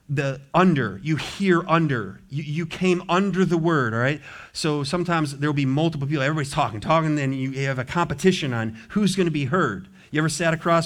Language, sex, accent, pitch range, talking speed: English, male, American, 130-170 Hz, 205 wpm